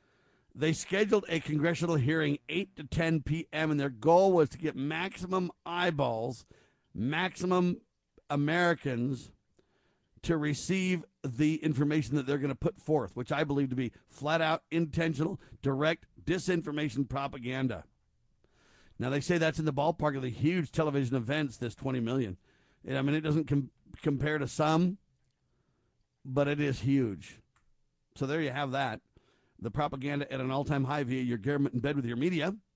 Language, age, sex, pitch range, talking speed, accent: English, 50-69, male, 135-165 Hz, 160 wpm, American